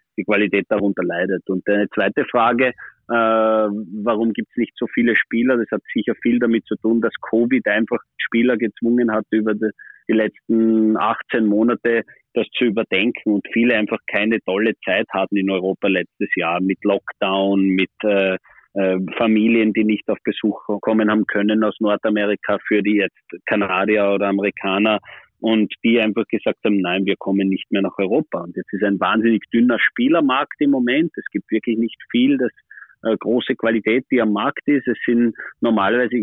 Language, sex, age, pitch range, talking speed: German, male, 30-49, 105-125 Hz, 175 wpm